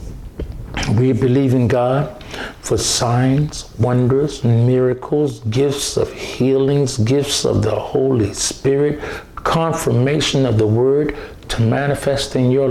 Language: English